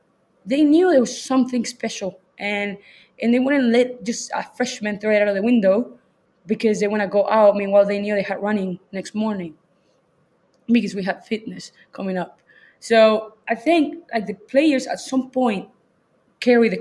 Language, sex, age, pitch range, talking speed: Finnish, female, 20-39, 190-220 Hz, 180 wpm